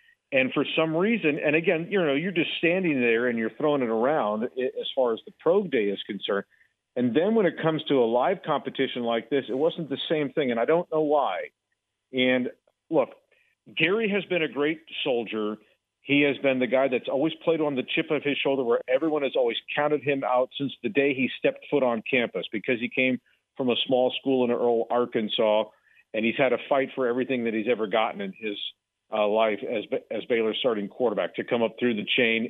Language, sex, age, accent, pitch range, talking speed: English, male, 50-69, American, 115-160 Hz, 225 wpm